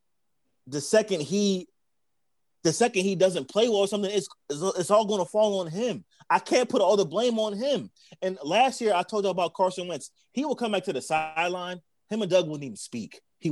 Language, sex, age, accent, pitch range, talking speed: English, male, 30-49, American, 180-235 Hz, 225 wpm